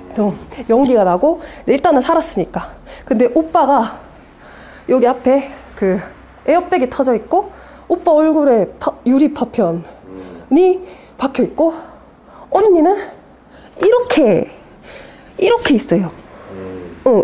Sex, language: female, Korean